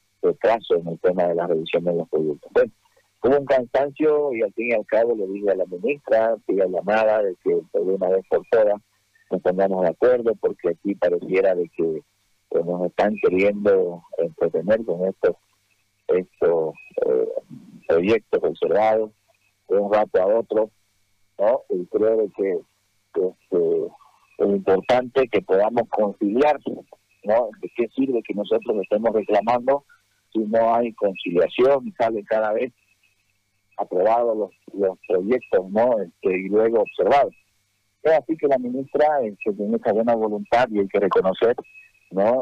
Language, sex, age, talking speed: Spanish, male, 50-69, 160 wpm